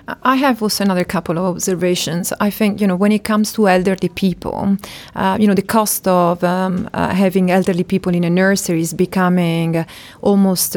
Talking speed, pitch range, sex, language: 190 wpm, 175-200 Hz, female, English